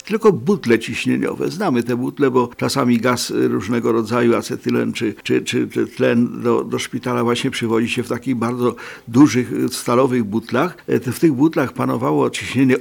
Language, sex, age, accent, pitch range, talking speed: Polish, male, 50-69, native, 120-155 Hz, 160 wpm